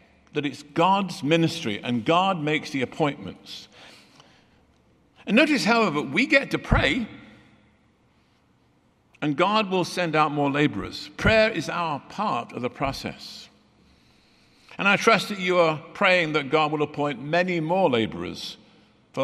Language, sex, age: English, male, 60-79